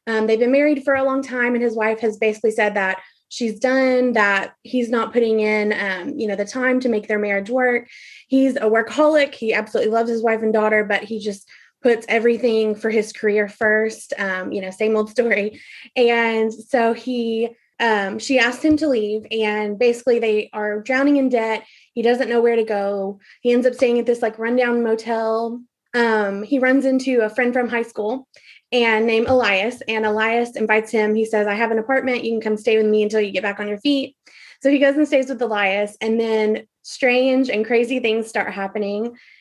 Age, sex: 20-39, female